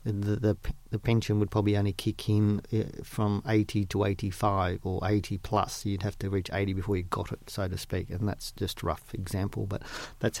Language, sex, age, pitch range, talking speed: English, male, 40-59, 100-115 Hz, 210 wpm